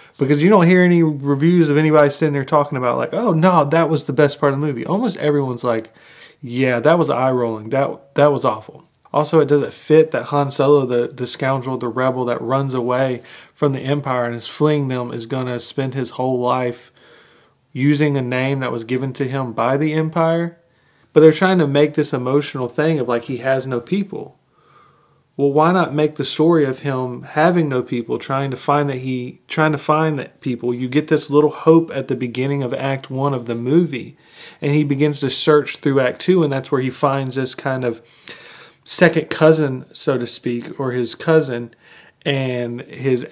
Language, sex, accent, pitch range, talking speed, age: English, male, American, 125-150 Hz, 210 wpm, 30-49